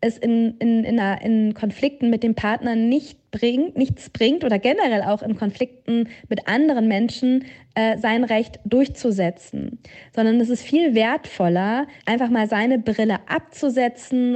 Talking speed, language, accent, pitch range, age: 140 wpm, German, German, 215-245 Hz, 20-39